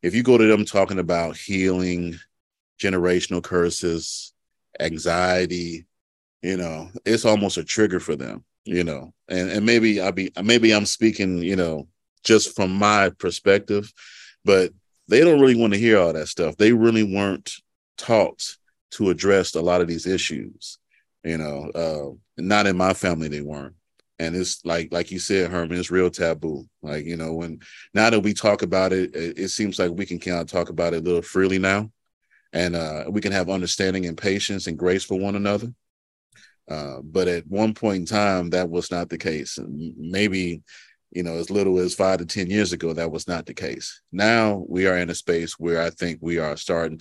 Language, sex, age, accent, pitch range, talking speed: English, male, 40-59, American, 85-100 Hz, 195 wpm